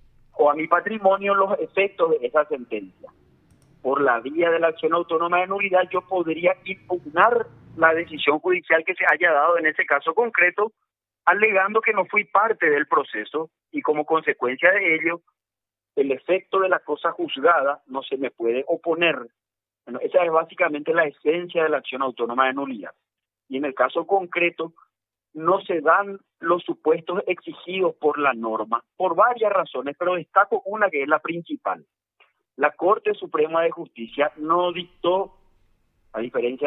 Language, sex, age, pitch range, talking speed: Spanish, male, 50-69, 145-190 Hz, 160 wpm